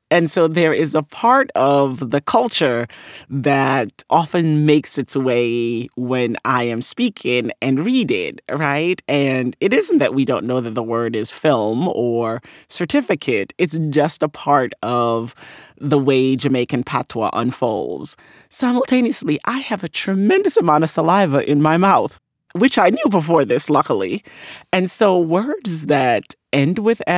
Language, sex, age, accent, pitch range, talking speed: English, male, 40-59, American, 135-185 Hz, 150 wpm